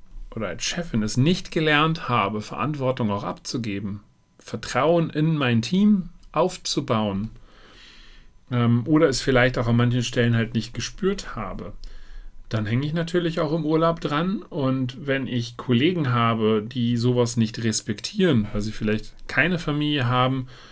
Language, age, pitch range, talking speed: German, 40-59, 115-140 Hz, 140 wpm